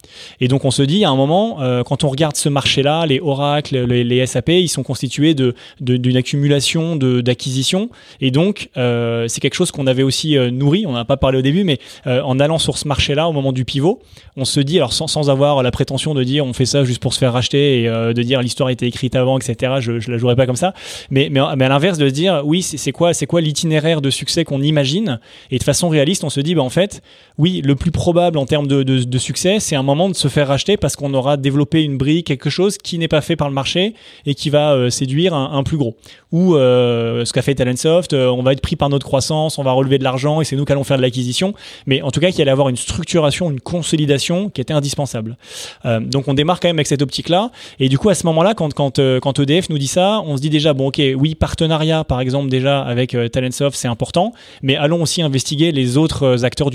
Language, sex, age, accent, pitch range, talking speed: English, male, 20-39, French, 130-160 Hz, 265 wpm